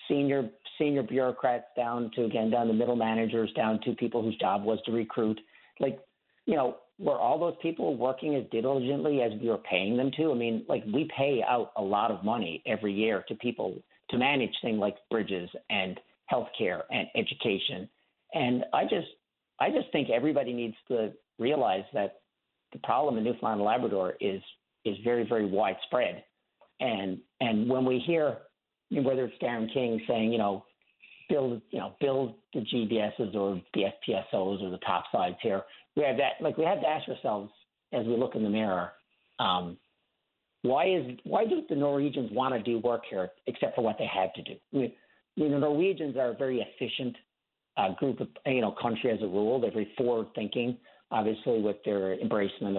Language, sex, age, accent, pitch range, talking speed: English, male, 50-69, American, 105-130 Hz, 185 wpm